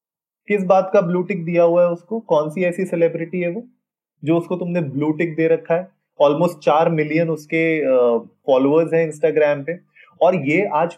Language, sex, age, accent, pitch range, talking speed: Hindi, male, 20-39, native, 140-180 Hz, 180 wpm